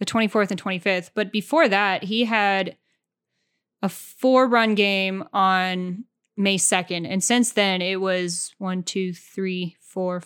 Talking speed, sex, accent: 140 wpm, female, American